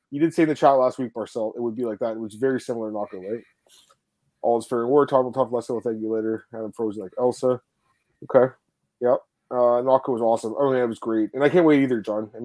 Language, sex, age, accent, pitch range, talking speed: English, male, 20-39, American, 115-145 Hz, 270 wpm